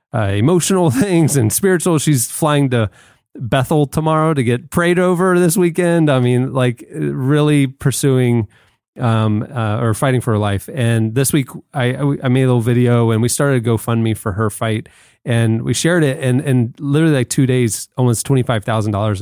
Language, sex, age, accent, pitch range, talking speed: English, male, 30-49, American, 110-135 Hz, 175 wpm